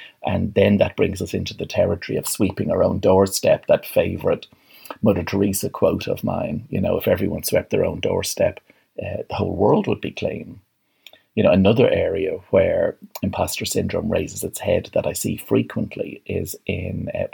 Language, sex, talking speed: English, male, 180 wpm